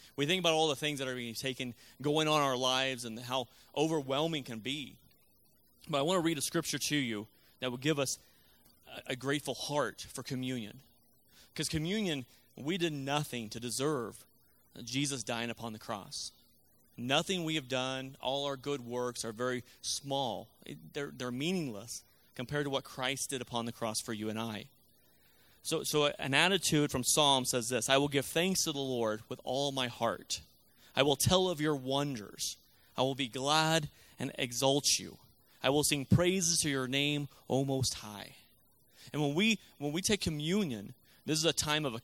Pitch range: 120-150 Hz